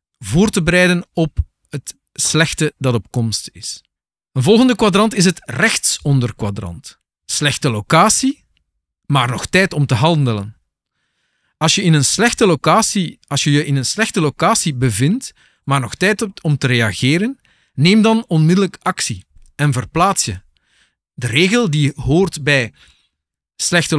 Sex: male